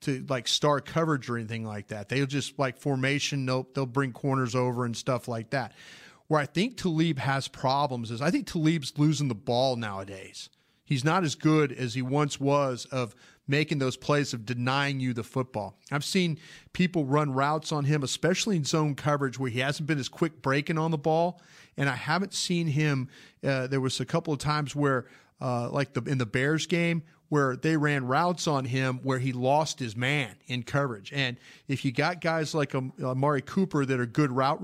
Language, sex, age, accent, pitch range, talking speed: English, male, 40-59, American, 130-155 Hz, 210 wpm